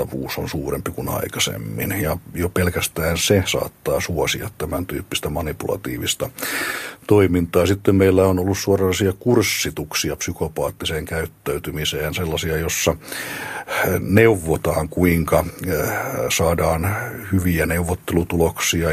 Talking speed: 90 wpm